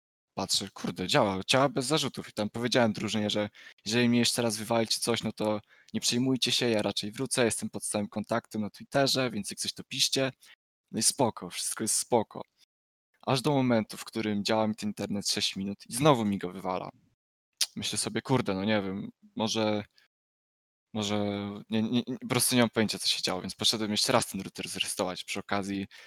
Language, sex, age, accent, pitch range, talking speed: Polish, male, 20-39, native, 105-125 Hz, 195 wpm